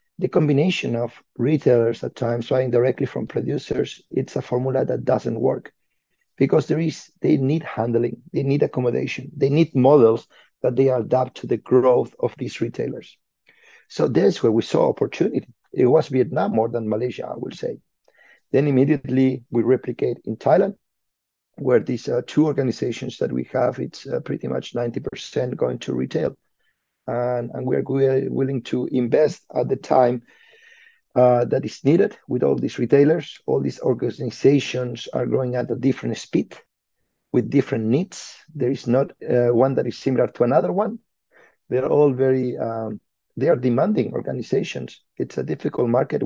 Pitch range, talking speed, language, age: 120-140 Hz, 160 wpm, English, 50-69